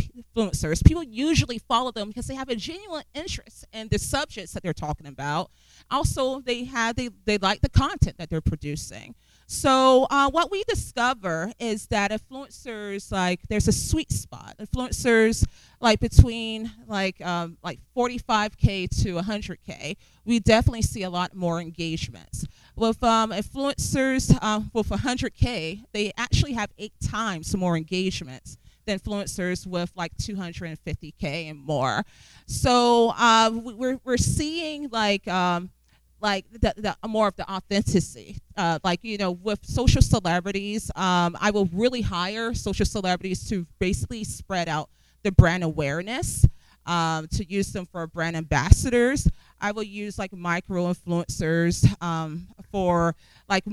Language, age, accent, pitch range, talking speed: English, 40-59, American, 170-225 Hz, 145 wpm